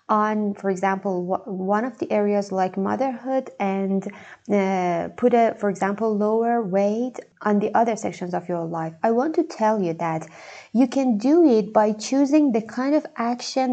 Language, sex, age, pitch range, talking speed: English, female, 20-39, 195-235 Hz, 175 wpm